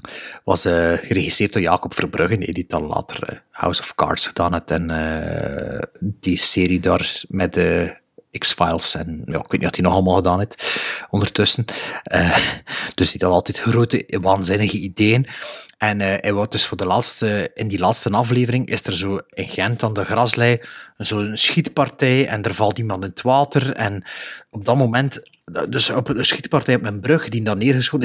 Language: Dutch